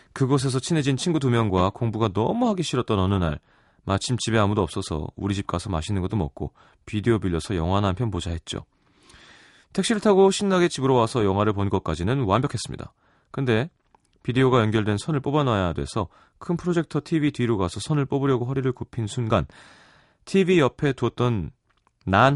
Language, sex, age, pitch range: Korean, male, 30-49, 95-135 Hz